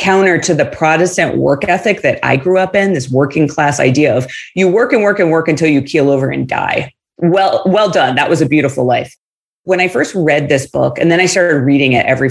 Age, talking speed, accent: 30-49, 240 wpm, American